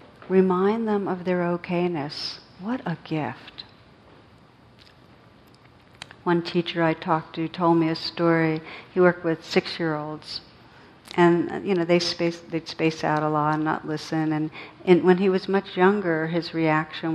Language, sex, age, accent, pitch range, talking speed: English, female, 60-79, American, 160-175 Hz, 150 wpm